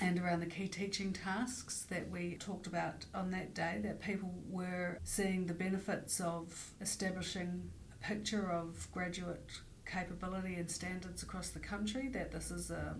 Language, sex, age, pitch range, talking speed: English, female, 50-69, 170-195 Hz, 160 wpm